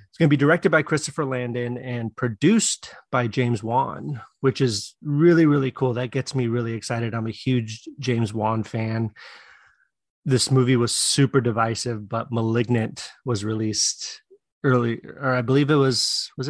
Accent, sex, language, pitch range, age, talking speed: American, male, English, 120-140 Hz, 30-49, 160 wpm